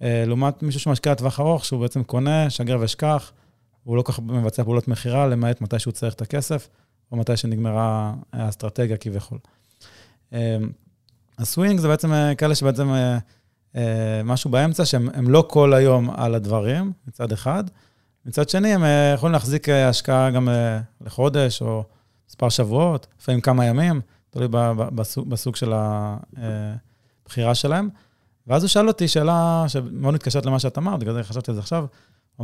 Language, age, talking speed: Hebrew, 20-39, 155 wpm